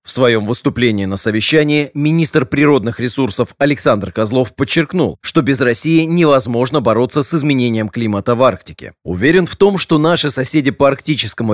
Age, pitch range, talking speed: 30-49, 115-145 Hz, 150 wpm